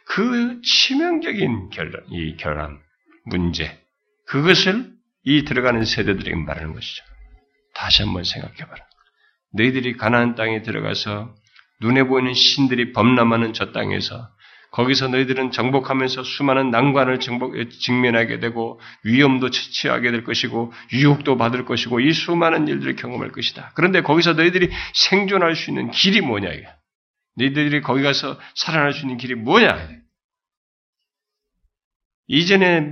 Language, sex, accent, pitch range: Korean, male, native, 115-175 Hz